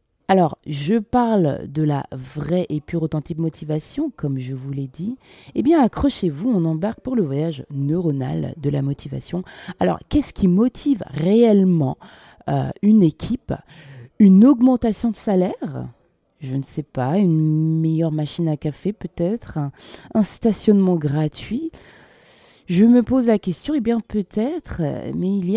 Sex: female